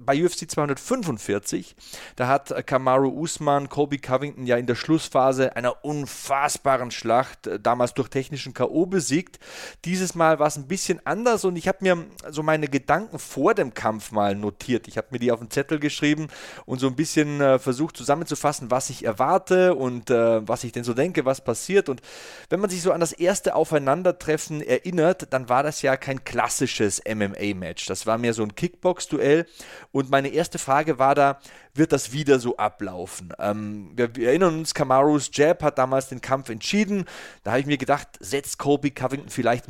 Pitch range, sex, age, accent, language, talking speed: 120-155 Hz, male, 30-49, German, German, 185 wpm